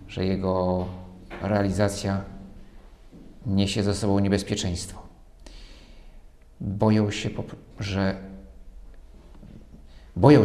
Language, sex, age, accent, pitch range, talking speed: Polish, male, 50-69, native, 95-115 Hz, 65 wpm